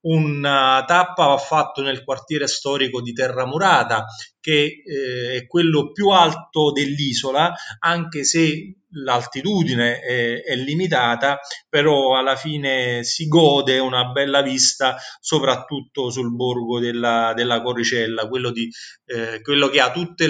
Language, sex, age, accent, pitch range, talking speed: Italian, male, 30-49, native, 125-150 Hz, 125 wpm